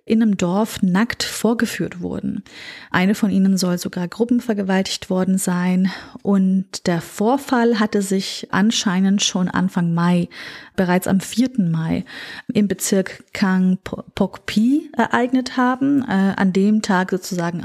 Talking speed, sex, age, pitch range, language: 135 wpm, female, 30-49, 185-225 Hz, German